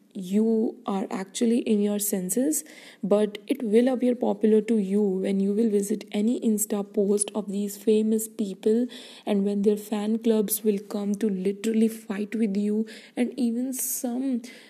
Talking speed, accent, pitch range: 160 wpm, Indian, 210-240 Hz